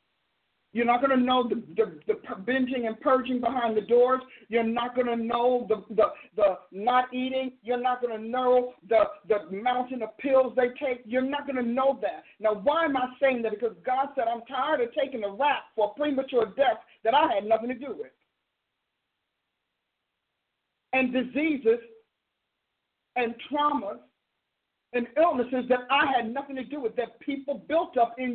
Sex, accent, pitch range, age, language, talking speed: male, American, 240-280 Hz, 50-69, English, 180 wpm